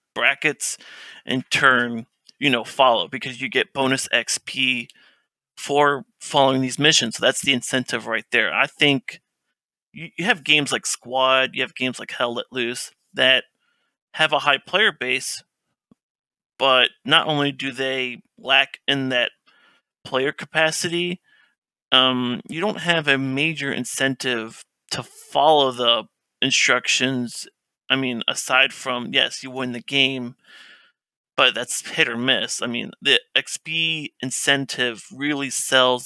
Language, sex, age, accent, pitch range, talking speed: English, male, 30-49, American, 125-145 Hz, 140 wpm